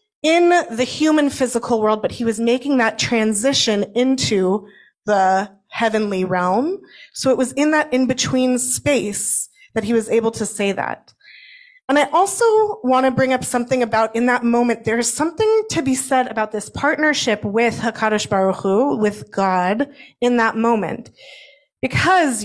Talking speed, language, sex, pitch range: 160 wpm, English, female, 210-270 Hz